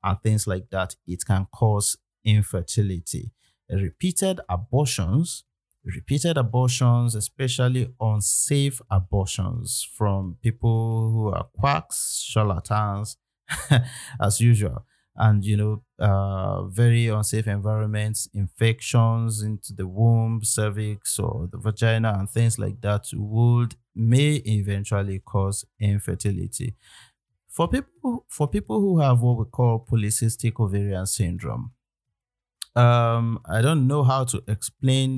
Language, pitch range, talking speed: English, 105-125 Hz, 115 wpm